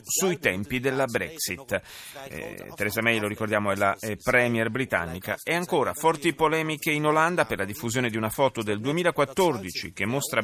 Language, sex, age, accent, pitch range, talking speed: Italian, male, 30-49, native, 110-150 Hz, 170 wpm